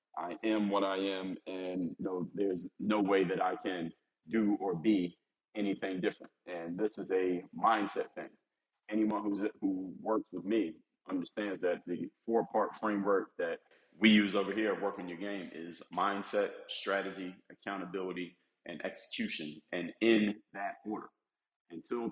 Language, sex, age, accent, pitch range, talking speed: English, male, 30-49, American, 95-110 Hz, 150 wpm